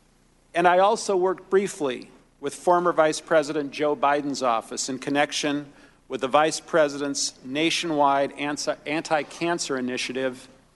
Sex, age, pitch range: male, 50-69, 130-155 Hz